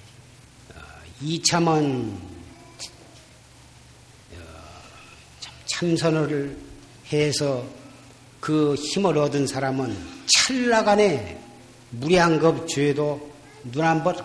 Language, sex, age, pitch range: Korean, male, 50-69, 120-160 Hz